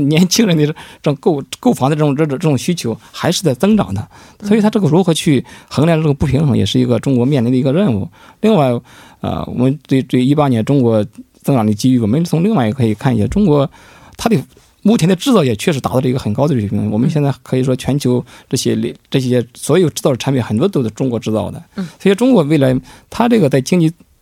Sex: male